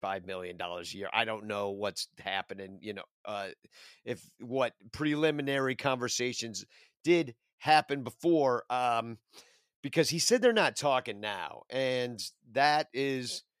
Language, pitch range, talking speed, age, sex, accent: English, 110-155 Hz, 130 wpm, 40-59, male, American